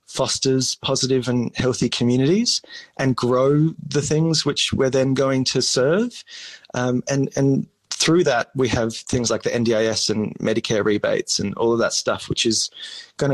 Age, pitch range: 20-39, 115-140 Hz